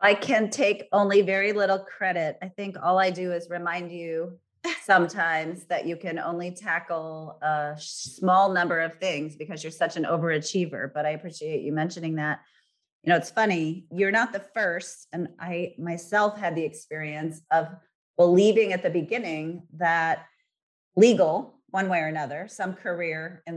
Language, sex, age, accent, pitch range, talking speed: English, female, 30-49, American, 155-180 Hz, 165 wpm